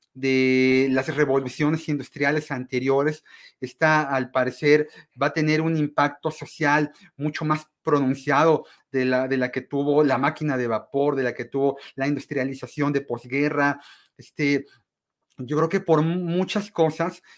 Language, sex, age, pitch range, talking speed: Spanish, male, 40-59, 135-160 Hz, 145 wpm